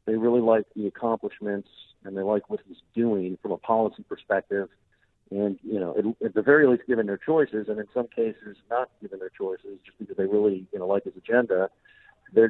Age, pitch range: 50-69, 100-115 Hz